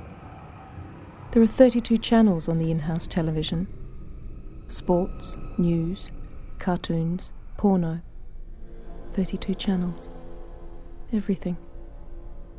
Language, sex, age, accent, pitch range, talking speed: English, female, 40-59, Australian, 130-185 Hz, 70 wpm